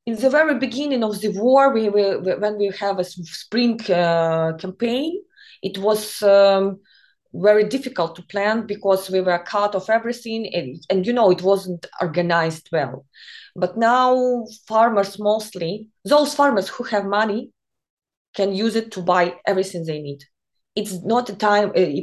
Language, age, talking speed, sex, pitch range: English, 20-39, 160 wpm, female, 175-230 Hz